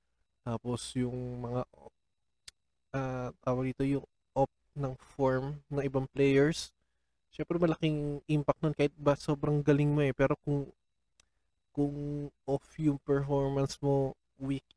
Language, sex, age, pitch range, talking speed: Filipino, male, 20-39, 120-150 Hz, 125 wpm